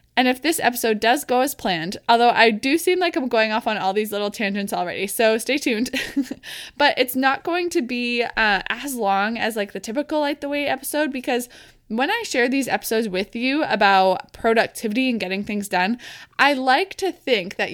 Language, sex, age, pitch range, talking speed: English, female, 20-39, 210-270 Hz, 205 wpm